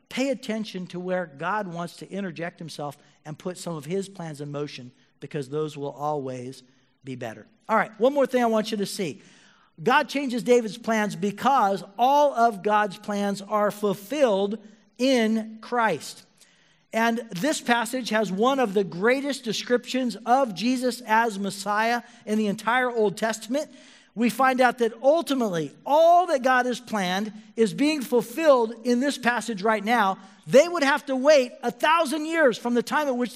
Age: 50-69